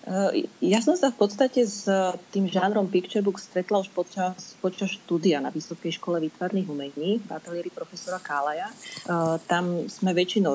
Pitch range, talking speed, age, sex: 160-200 Hz, 155 wpm, 30-49, female